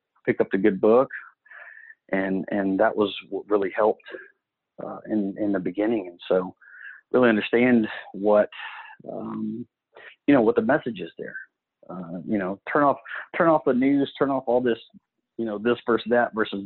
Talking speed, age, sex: 175 wpm, 40-59, male